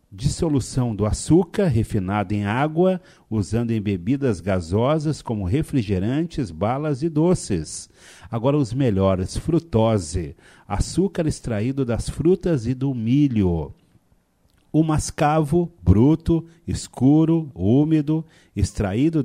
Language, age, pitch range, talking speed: Portuguese, 40-59, 105-155 Hz, 100 wpm